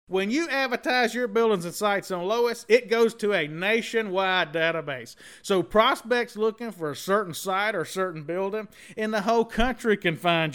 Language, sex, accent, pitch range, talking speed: English, male, American, 160-215 Hz, 175 wpm